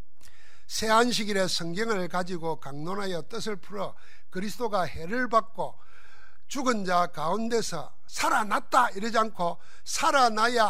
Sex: male